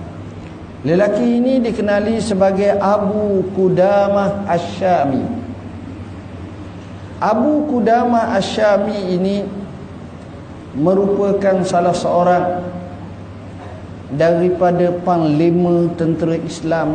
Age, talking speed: 50-69, 65 wpm